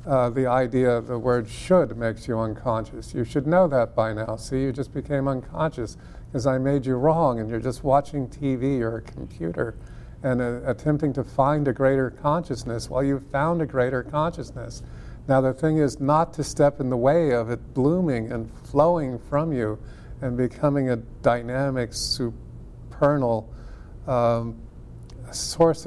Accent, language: American, English